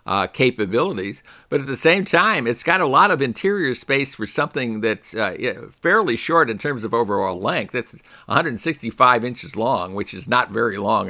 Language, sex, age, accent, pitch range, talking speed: English, male, 60-79, American, 115-165 Hz, 185 wpm